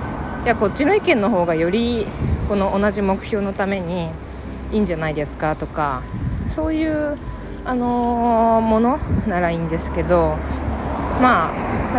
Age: 20-39